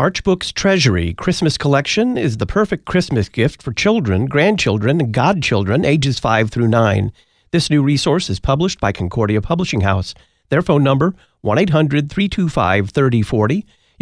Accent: American